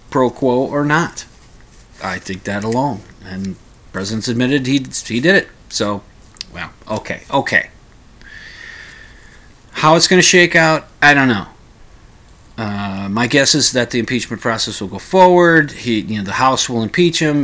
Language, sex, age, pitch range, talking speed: English, male, 40-59, 105-135 Hz, 165 wpm